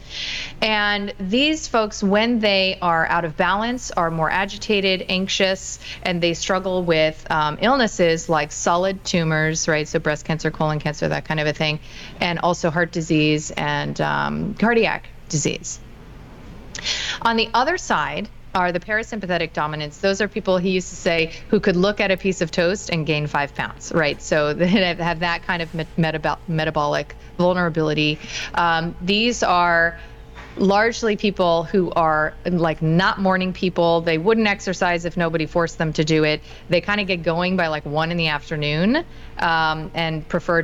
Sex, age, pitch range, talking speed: female, 30-49, 155-190 Hz, 165 wpm